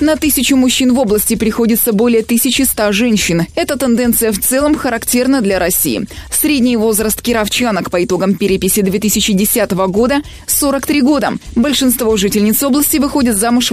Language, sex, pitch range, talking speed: Russian, female, 200-260 Hz, 135 wpm